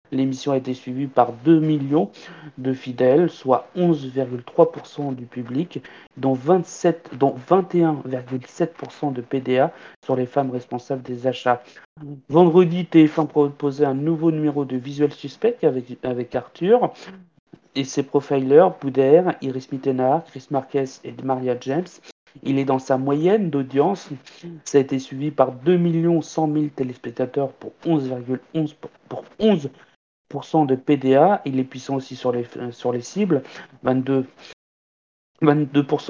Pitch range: 130-165 Hz